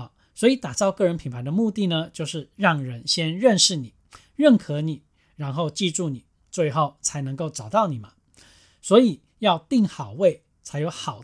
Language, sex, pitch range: Chinese, male, 140-185 Hz